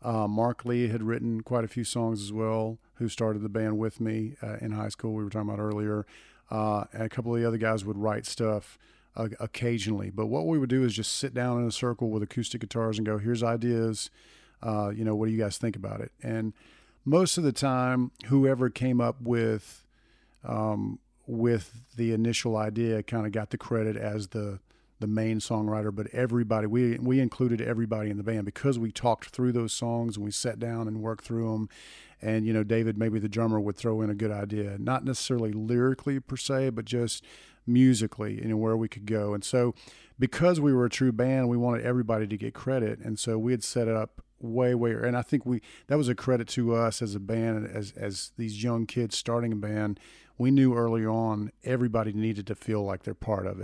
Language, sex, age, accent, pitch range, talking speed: English, male, 40-59, American, 110-120 Hz, 225 wpm